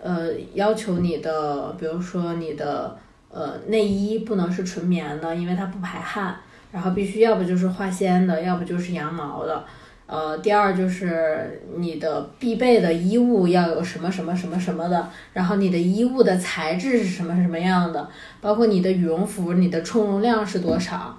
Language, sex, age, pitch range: Chinese, female, 20-39, 170-205 Hz